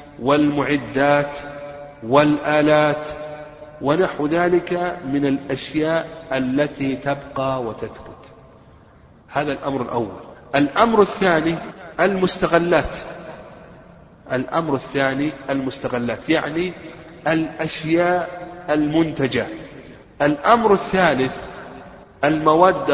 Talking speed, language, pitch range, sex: 65 wpm, Arabic, 135-170 Hz, male